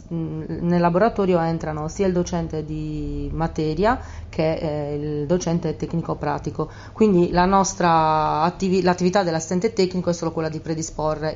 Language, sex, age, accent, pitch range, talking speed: Italian, female, 30-49, native, 150-170 Hz, 130 wpm